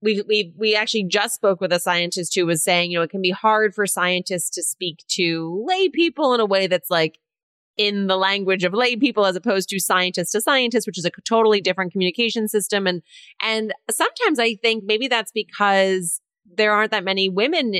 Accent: American